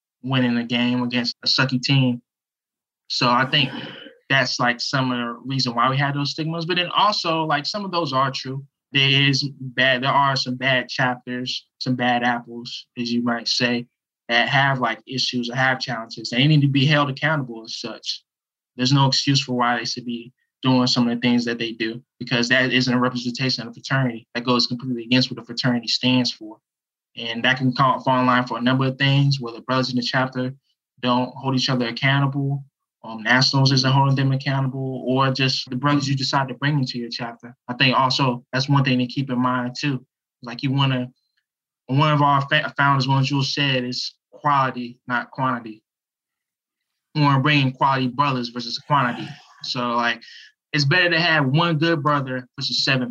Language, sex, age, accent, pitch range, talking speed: English, male, 20-39, American, 120-140 Hz, 200 wpm